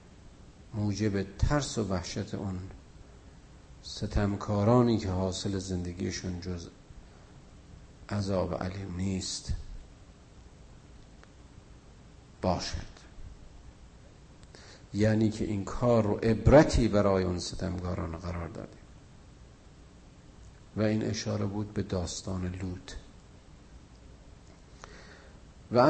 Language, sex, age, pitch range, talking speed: Persian, male, 50-69, 90-110 Hz, 75 wpm